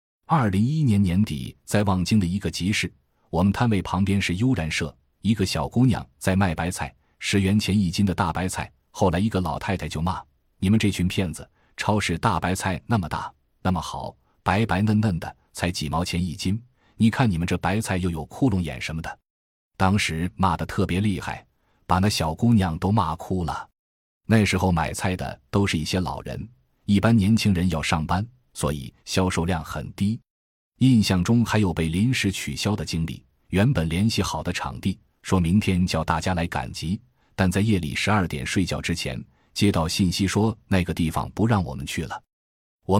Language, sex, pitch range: Chinese, male, 80-105 Hz